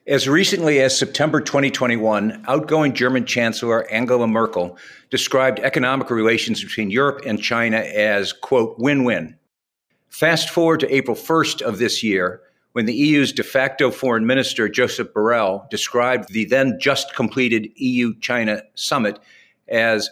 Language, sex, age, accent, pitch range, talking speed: English, male, 50-69, American, 125-155 Hz, 130 wpm